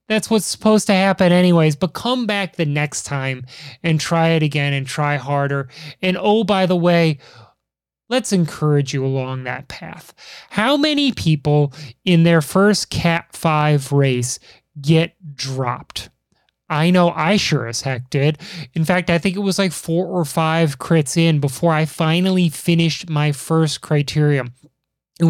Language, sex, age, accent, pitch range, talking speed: English, male, 20-39, American, 150-175 Hz, 160 wpm